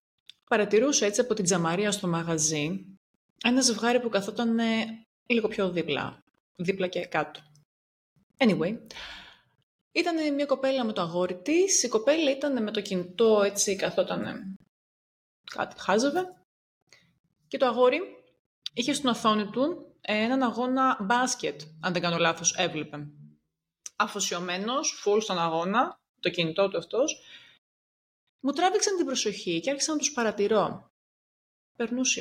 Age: 30-49